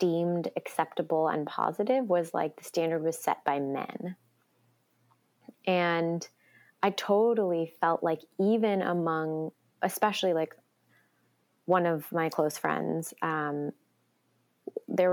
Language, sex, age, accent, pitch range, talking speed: English, female, 20-39, American, 165-205 Hz, 110 wpm